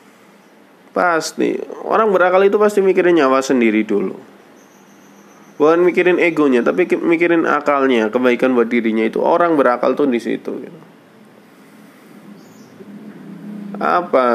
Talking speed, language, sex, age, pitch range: 110 wpm, Indonesian, male, 20-39, 110-170 Hz